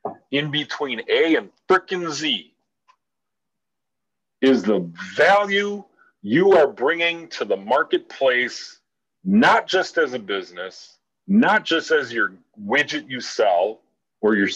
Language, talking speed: English, 120 wpm